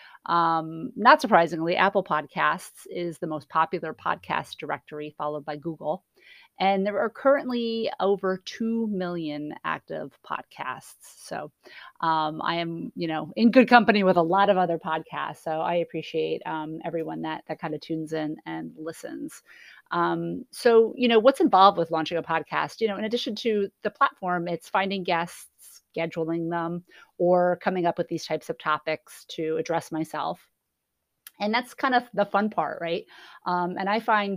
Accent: American